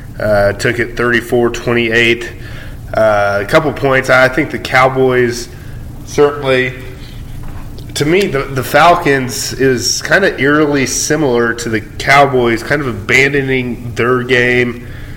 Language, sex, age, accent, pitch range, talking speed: English, male, 20-39, American, 110-125 Hz, 125 wpm